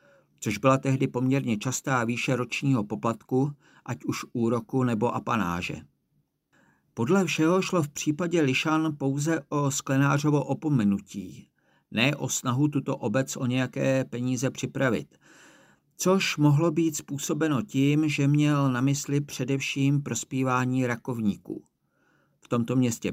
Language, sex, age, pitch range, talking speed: Czech, male, 50-69, 120-145 Hz, 120 wpm